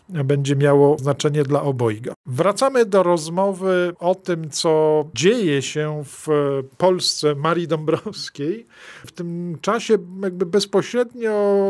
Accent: native